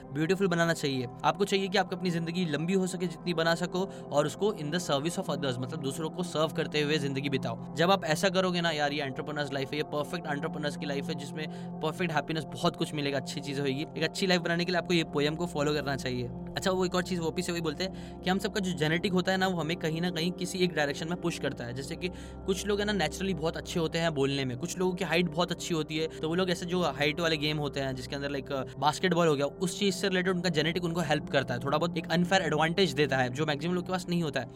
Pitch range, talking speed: 150-180 Hz, 260 wpm